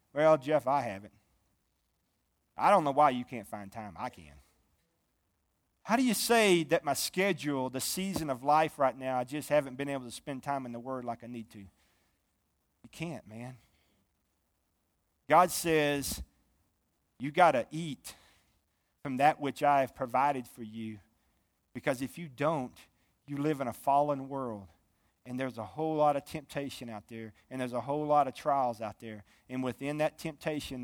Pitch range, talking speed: 95-140 Hz, 175 wpm